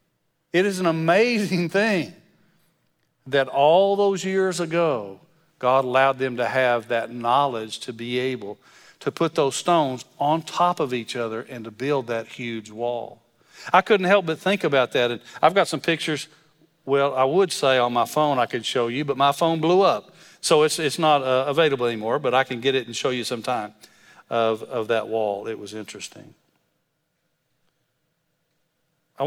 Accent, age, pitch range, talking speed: American, 50-69, 120-160 Hz, 180 wpm